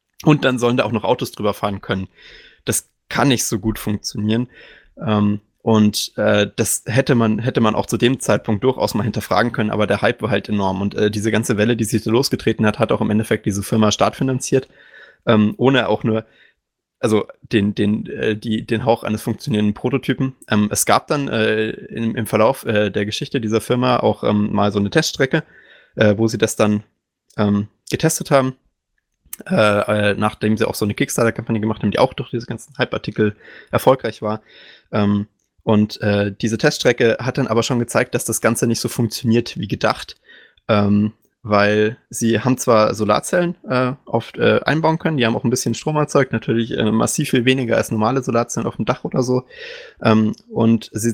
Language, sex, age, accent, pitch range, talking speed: German, male, 20-39, German, 105-125 Hz, 195 wpm